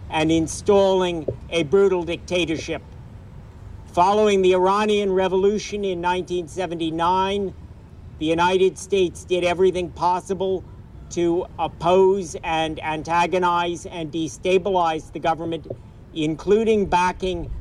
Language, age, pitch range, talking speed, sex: English, 50-69, 155-185 Hz, 90 wpm, male